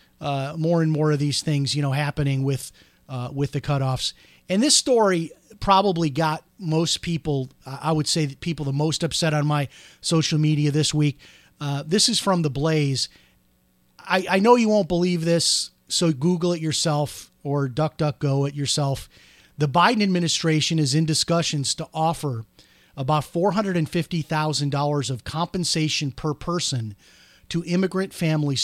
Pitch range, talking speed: 140-175 Hz, 170 wpm